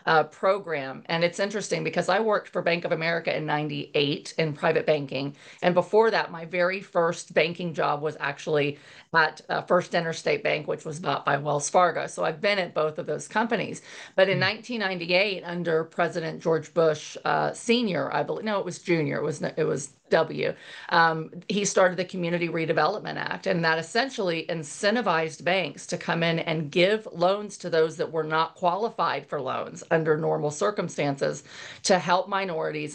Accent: American